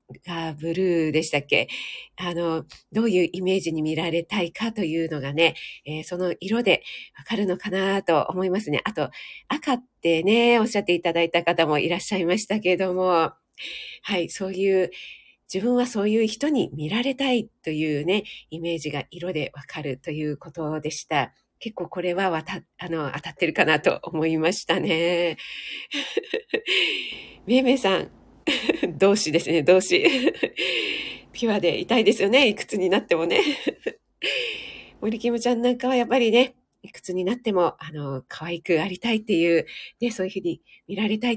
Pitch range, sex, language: 170-240 Hz, female, Japanese